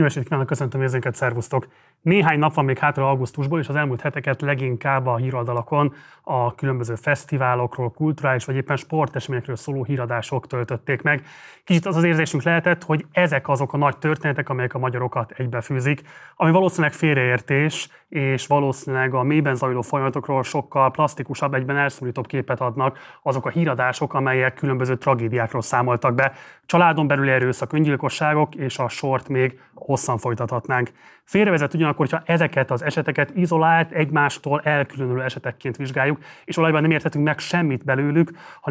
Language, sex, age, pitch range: Hungarian, male, 30-49, 130-150 Hz